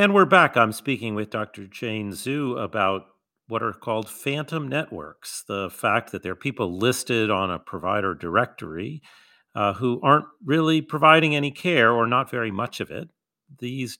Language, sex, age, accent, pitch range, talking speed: English, male, 40-59, American, 100-130 Hz, 170 wpm